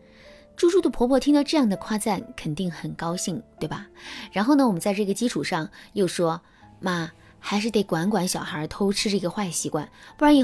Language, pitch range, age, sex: Chinese, 170-250 Hz, 20-39, female